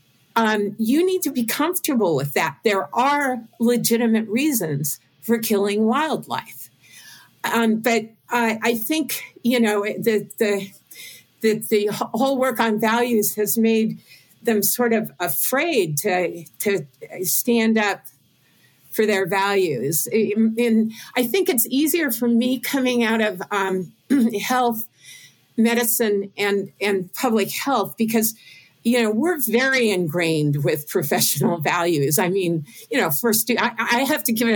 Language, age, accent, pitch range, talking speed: English, 50-69, American, 195-240 Hz, 140 wpm